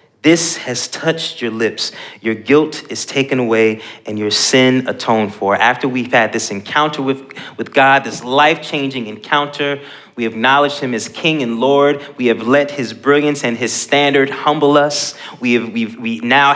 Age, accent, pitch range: 30-49, American, 125-155 Hz